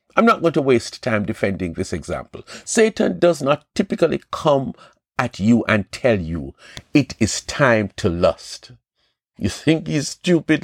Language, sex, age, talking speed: English, male, 60-79, 160 wpm